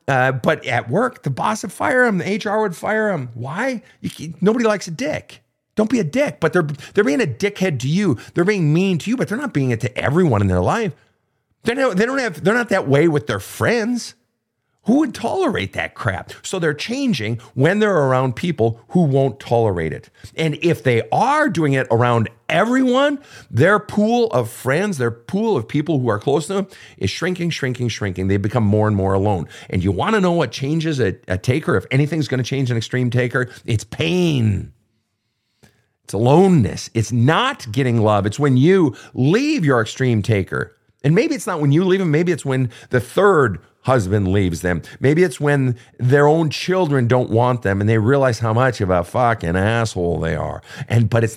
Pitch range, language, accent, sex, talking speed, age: 110-165 Hz, English, American, male, 205 wpm, 50-69